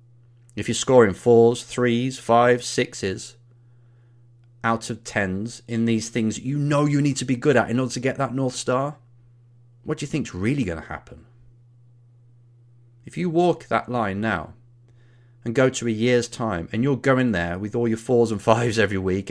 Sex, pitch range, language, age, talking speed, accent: male, 110-120 Hz, English, 30-49, 185 wpm, British